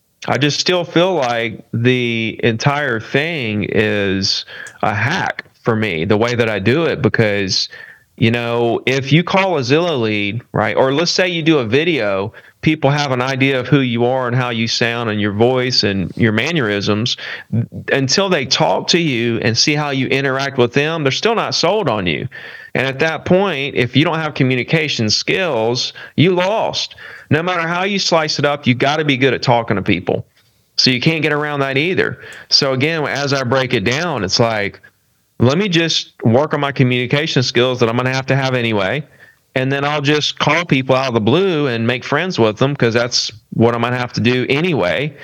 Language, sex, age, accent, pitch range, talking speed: English, male, 40-59, American, 120-160 Hz, 210 wpm